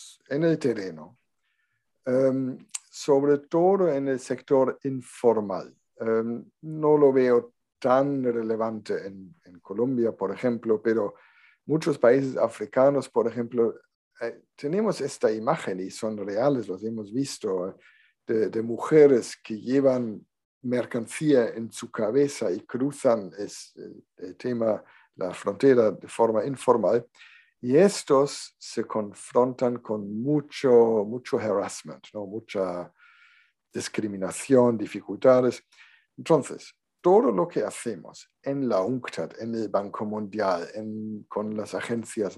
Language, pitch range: Spanish, 110-140 Hz